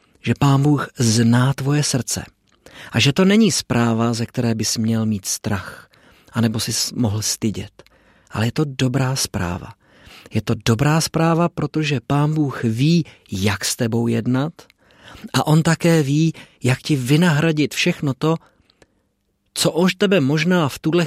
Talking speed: 150 wpm